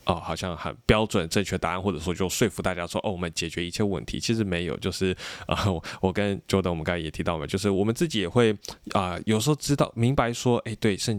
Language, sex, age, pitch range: Chinese, male, 20-39, 90-115 Hz